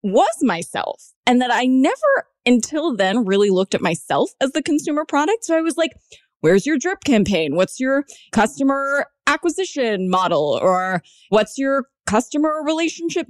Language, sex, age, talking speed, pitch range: English, female, 20-39, 155 wpm, 195-315 Hz